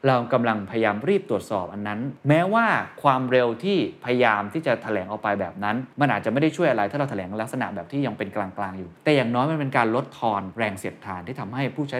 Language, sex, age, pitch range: Thai, male, 20-39, 110-150 Hz